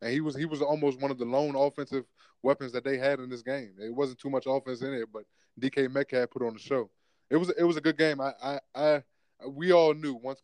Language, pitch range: English, 125-145 Hz